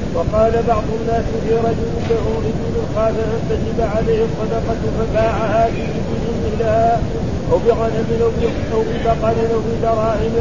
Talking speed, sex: 120 wpm, male